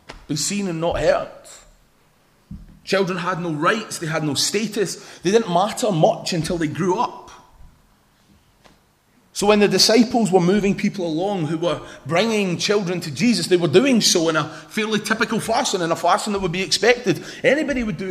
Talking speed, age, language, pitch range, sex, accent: 175 wpm, 30-49, English, 175-215 Hz, male, British